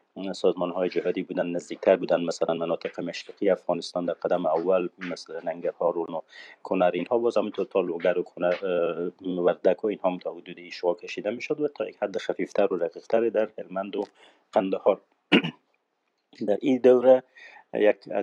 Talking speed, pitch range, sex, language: 150 wpm, 90-115 Hz, male, Persian